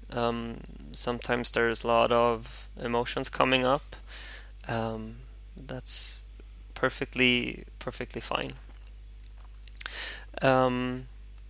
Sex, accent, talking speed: male, Swedish, 80 wpm